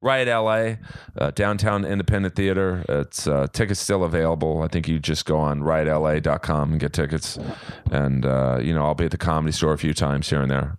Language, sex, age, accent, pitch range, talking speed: English, male, 30-49, American, 80-95 Hz, 205 wpm